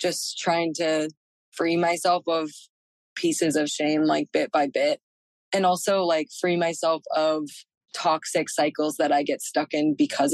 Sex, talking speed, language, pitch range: female, 155 wpm, English, 155-180 Hz